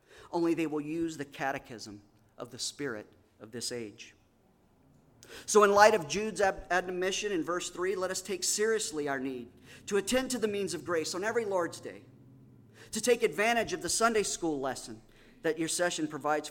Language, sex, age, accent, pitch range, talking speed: English, male, 40-59, American, 125-175 Hz, 180 wpm